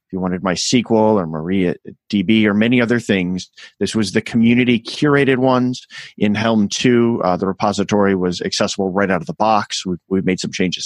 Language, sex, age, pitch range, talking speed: English, male, 30-49, 95-120 Hz, 190 wpm